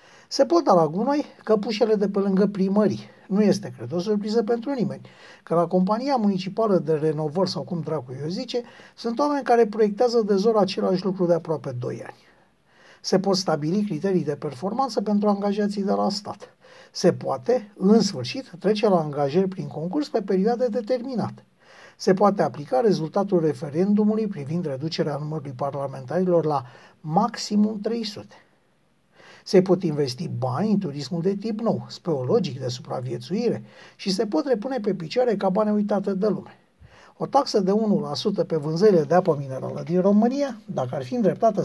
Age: 60-79